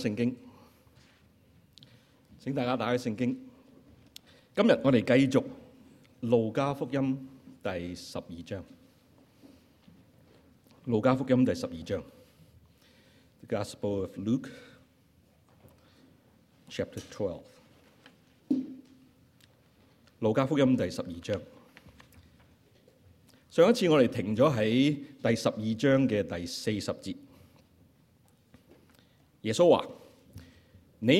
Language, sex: Chinese, male